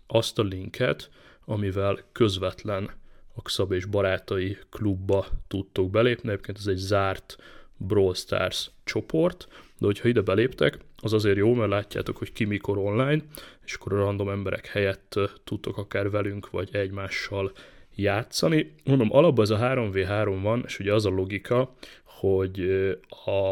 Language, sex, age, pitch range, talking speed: Hungarian, male, 30-49, 100-115 Hz, 145 wpm